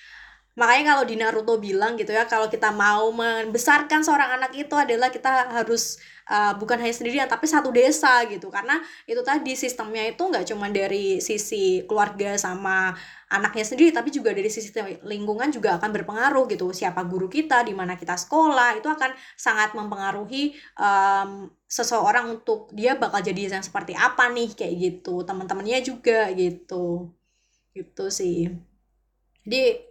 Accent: native